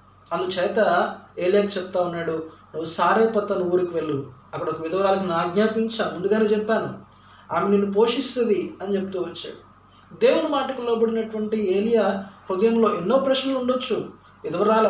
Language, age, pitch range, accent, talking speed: Telugu, 20-39, 180-225 Hz, native, 115 wpm